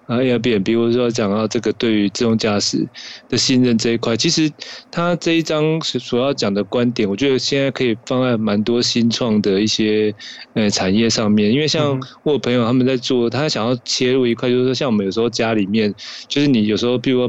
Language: Chinese